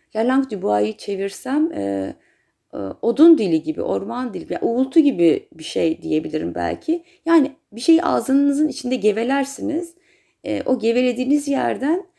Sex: female